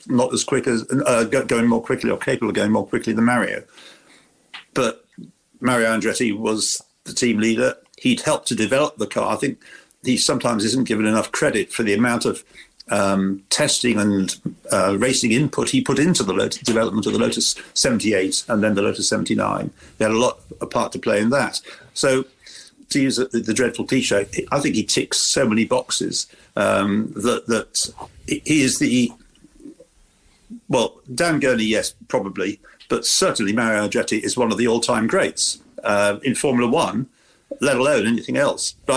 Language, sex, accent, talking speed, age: English, male, British, 180 wpm, 50-69